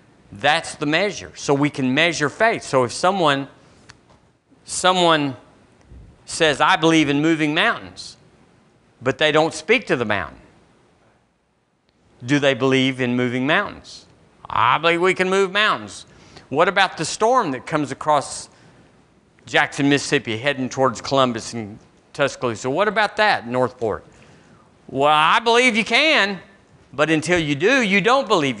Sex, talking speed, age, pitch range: male, 140 wpm, 50-69, 120-170 Hz